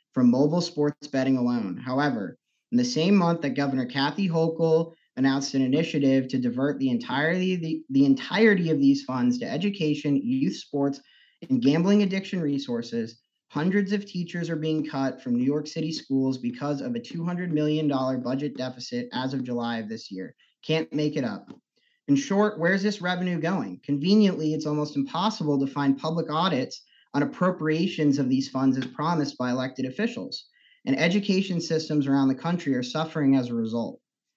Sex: male